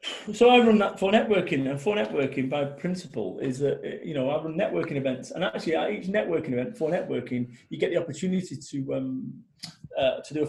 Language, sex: English, male